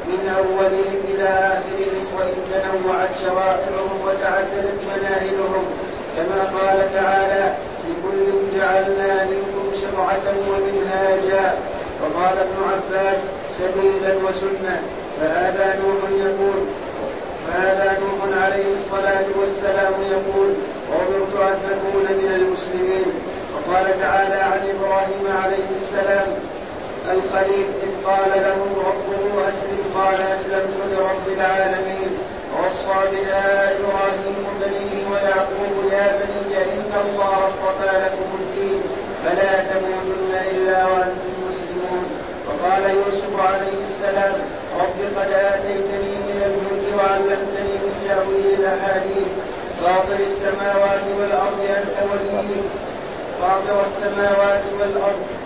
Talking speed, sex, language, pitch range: 95 wpm, male, Arabic, 190-195 Hz